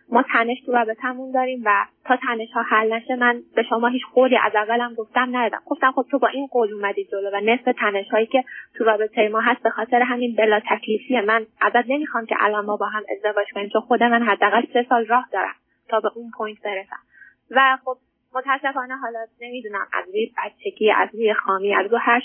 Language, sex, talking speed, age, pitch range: Persian, female, 215 wpm, 20-39, 215-255 Hz